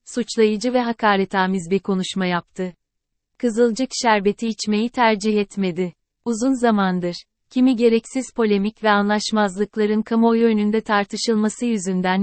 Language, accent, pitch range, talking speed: Turkish, native, 195-230 Hz, 110 wpm